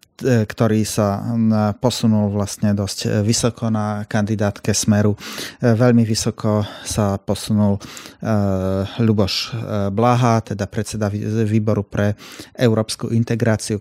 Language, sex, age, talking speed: Slovak, male, 30-49, 90 wpm